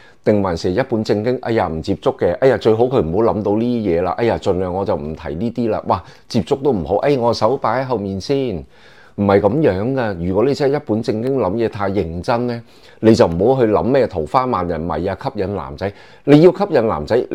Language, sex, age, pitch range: Chinese, male, 30-49, 100-130 Hz